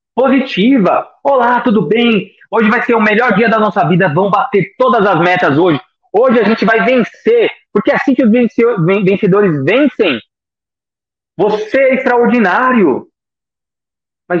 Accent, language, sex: Brazilian, Portuguese, male